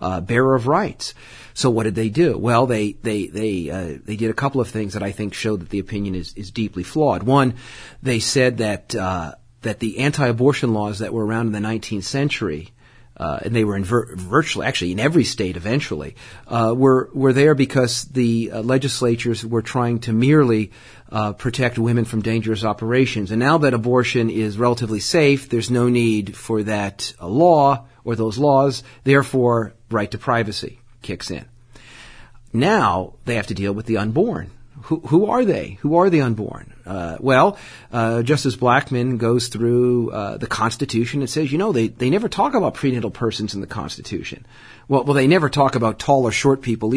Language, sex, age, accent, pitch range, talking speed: English, male, 40-59, American, 110-130 Hz, 195 wpm